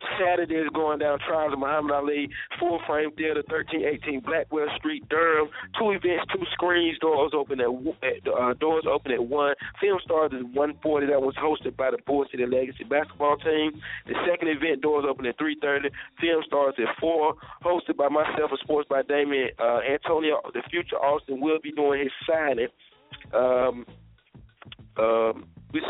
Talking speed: 165 wpm